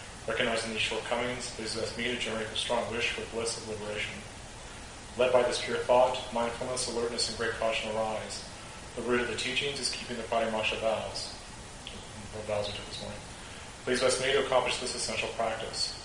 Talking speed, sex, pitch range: 175 wpm, male, 110-120 Hz